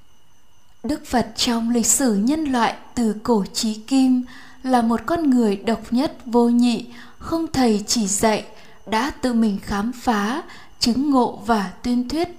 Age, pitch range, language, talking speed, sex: 20-39, 220-260 Hz, Vietnamese, 160 wpm, female